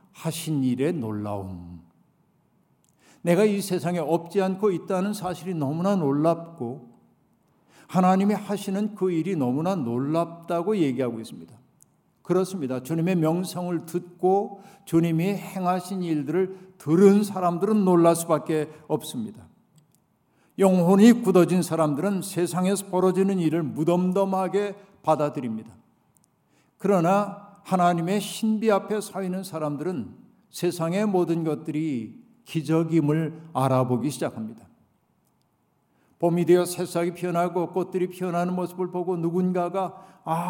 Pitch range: 150-190 Hz